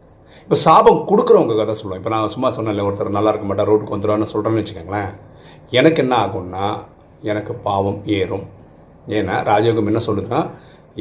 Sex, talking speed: male, 145 wpm